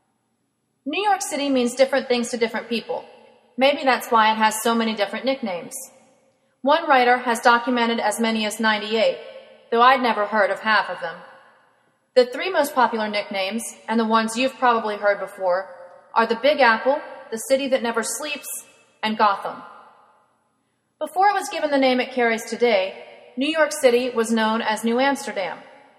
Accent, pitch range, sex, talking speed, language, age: American, 225-275 Hz, female, 170 wpm, English, 30-49